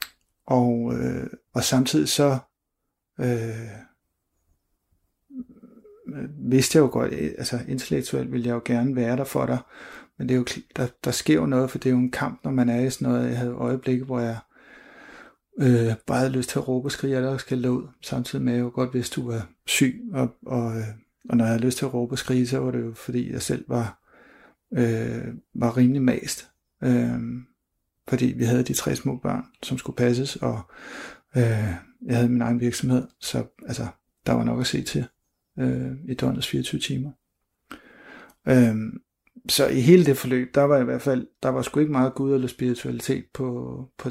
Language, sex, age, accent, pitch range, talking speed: Danish, male, 60-79, native, 115-130 Hz, 195 wpm